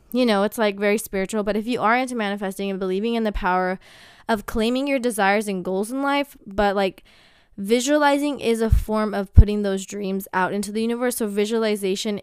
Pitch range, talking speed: 190-230 Hz, 200 wpm